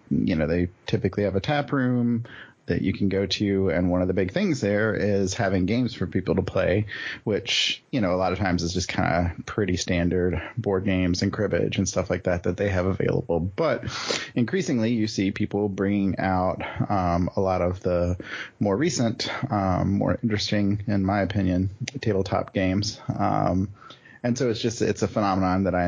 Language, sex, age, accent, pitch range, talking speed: English, male, 30-49, American, 90-105 Hz, 195 wpm